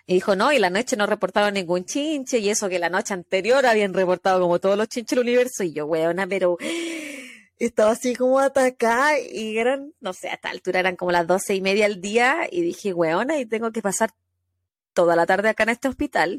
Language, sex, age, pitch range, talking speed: Spanish, female, 20-39, 175-250 Hz, 225 wpm